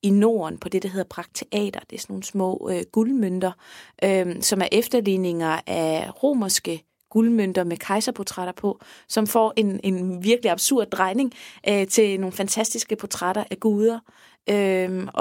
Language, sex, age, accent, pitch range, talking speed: Danish, female, 30-49, native, 185-220 Hz, 155 wpm